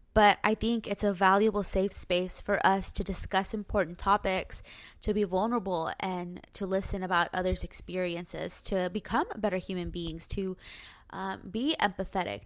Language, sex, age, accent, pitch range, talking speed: English, female, 20-39, American, 190-245 Hz, 155 wpm